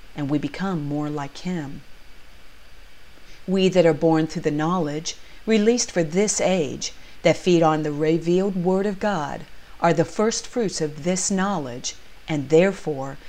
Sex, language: female, English